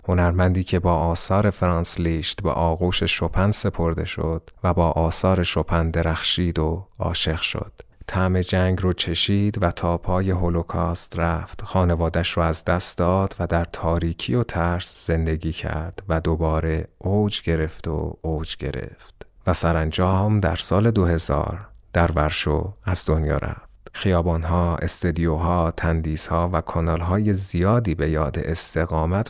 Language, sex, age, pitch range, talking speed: Persian, male, 30-49, 80-95 Hz, 135 wpm